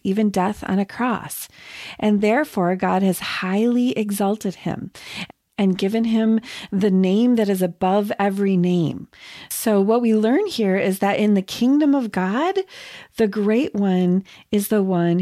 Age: 40-59